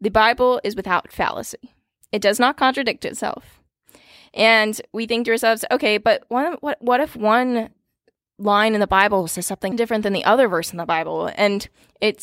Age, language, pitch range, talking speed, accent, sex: 20-39, English, 200-245 Hz, 185 wpm, American, female